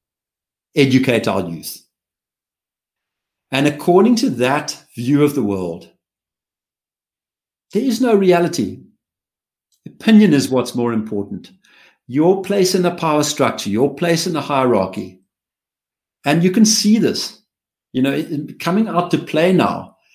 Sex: male